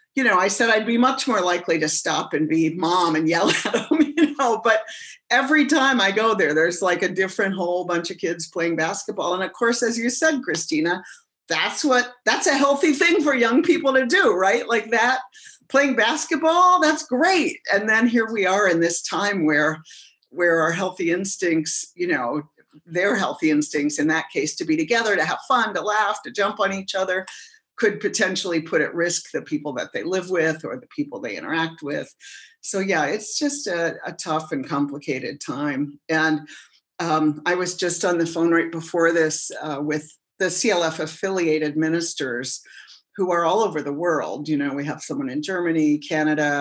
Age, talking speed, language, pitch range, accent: 50-69, 195 wpm, English, 155-235 Hz, American